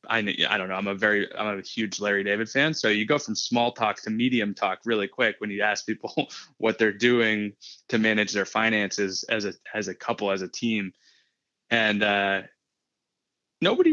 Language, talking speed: English, 200 wpm